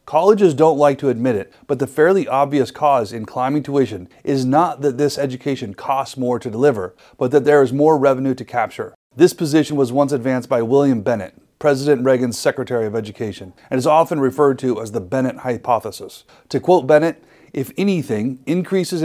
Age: 30-49